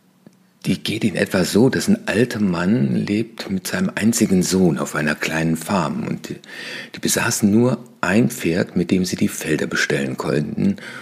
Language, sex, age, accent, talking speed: German, male, 60-79, German, 175 wpm